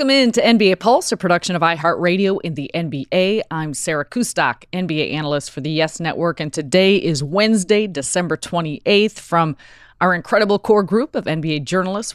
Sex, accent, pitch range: female, American, 150-185 Hz